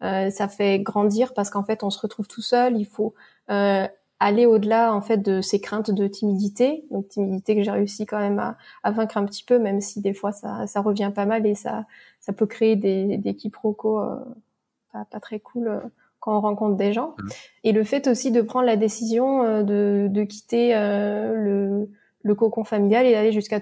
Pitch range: 200-230 Hz